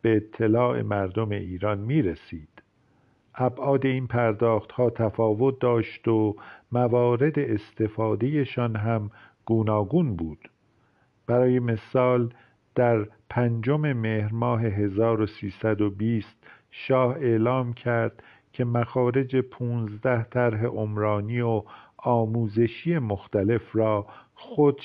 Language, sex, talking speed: Persian, male, 85 wpm